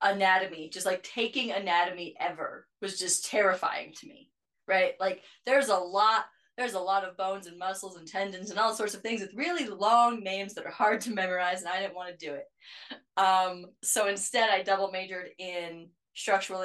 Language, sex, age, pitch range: English, female, 20-39, 175-195 Hz